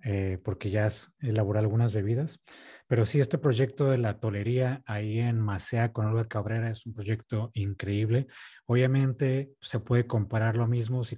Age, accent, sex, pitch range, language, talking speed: 30-49, Mexican, male, 110-130 Hz, Spanish, 165 wpm